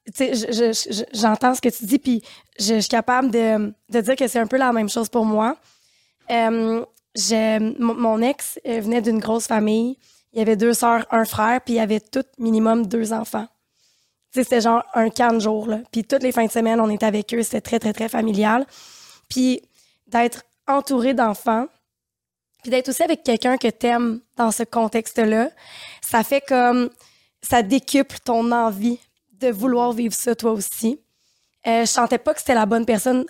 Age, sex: 20-39, female